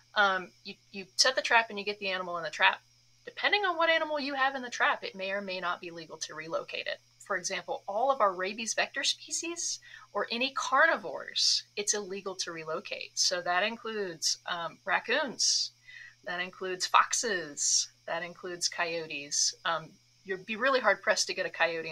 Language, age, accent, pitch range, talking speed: English, 30-49, American, 180-255 Hz, 190 wpm